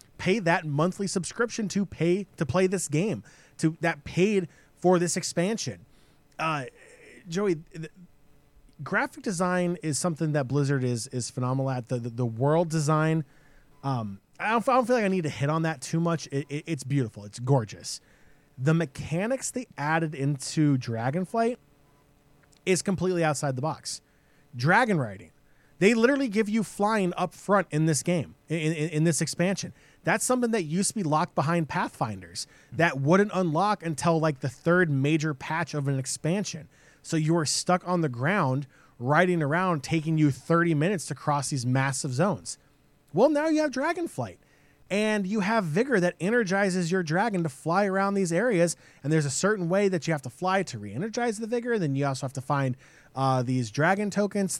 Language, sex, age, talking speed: English, male, 20-39, 180 wpm